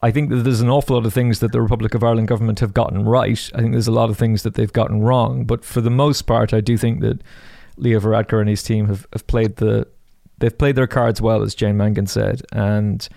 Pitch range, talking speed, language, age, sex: 105-125 Hz, 260 wpm, English, 30-49, male